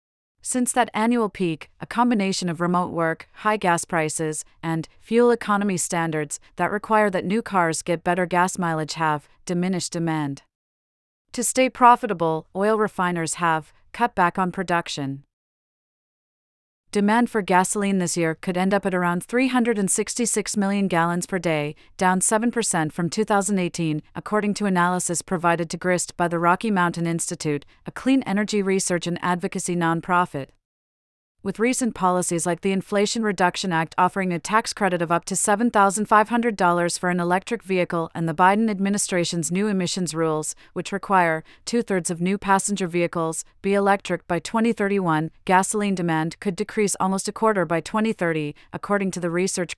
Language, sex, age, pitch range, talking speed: English, female, 40-59, 170-205 Hz, 150 wpm